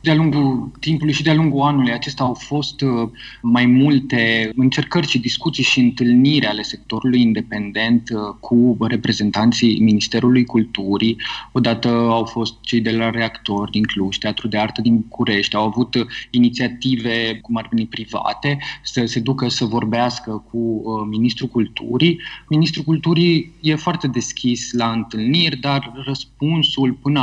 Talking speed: 140 wpm